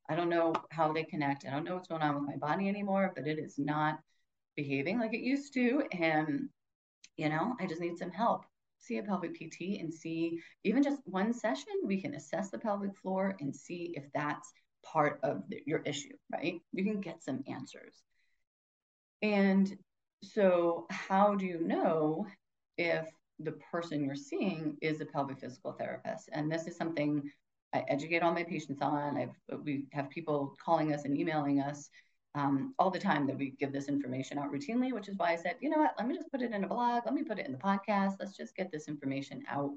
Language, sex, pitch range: English, female, 150-205 Hz